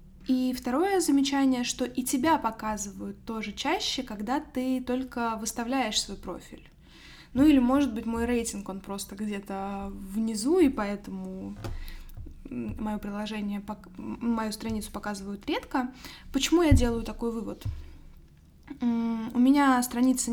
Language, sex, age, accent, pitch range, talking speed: Russian, female, 20-39, native, 205-255 Hz, 120 wpm